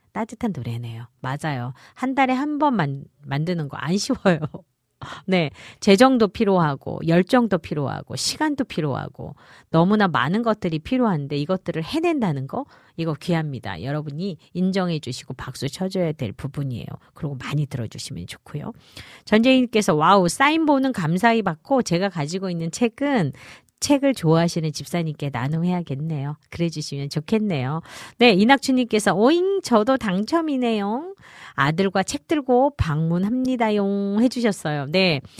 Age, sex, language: 40-59, female, Korean